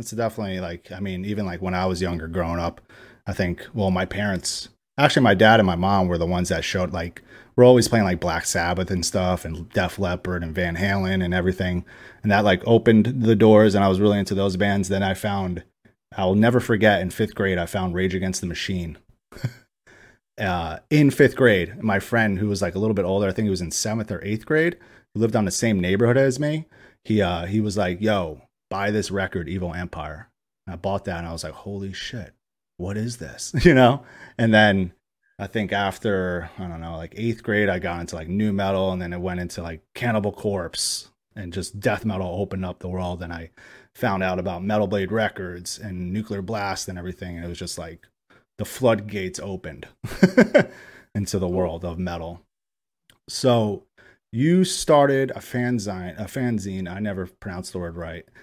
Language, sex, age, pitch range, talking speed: English, male, 30-49, 90-110 Hz, 205 wpm